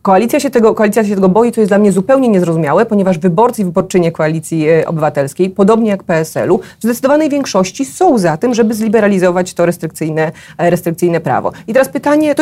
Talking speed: 185 wpm